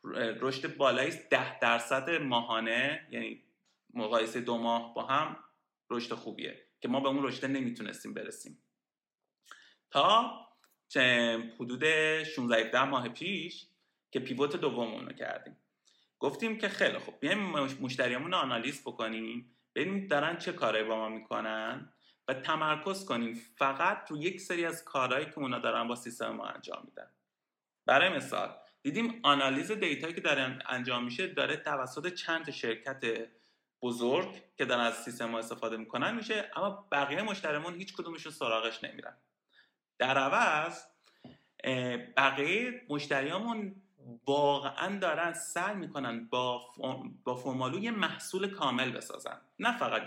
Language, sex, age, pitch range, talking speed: Persian, male, 30-49, 120-180 Hz, 130 wpm